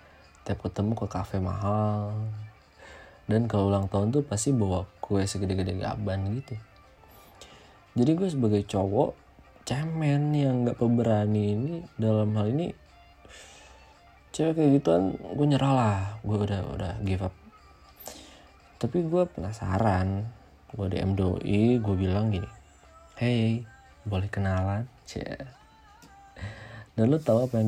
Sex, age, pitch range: male, 20-39, 95-120 Hz